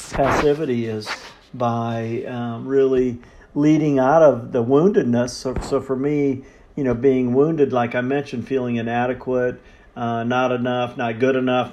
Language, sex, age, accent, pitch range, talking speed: English, male, 50-69, American, 125-140 Hz, 150 wpm